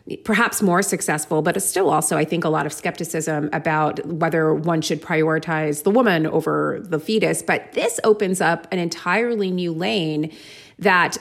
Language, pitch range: English, 160-200 Hz